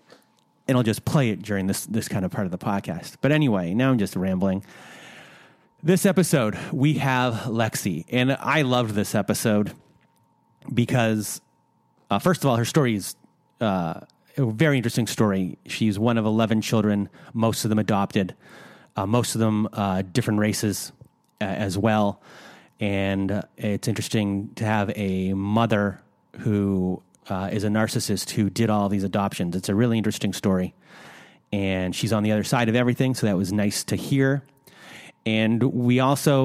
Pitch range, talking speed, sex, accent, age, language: 100-125 Hz, 170 wpm, male, American, 30-49, English